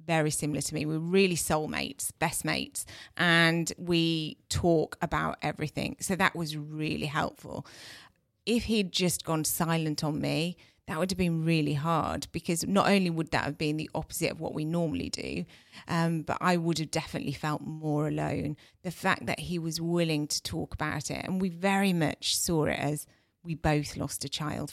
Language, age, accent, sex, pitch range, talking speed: English, 30-49, British, female, 145-165 Hz, 185 wpm